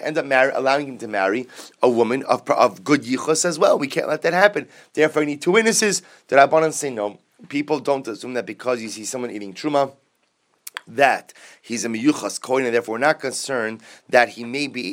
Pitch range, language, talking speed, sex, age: 110-145 Hz, English, 215 wpm, male, 30-49